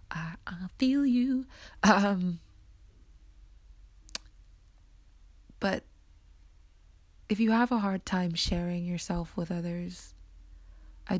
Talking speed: 85 wpm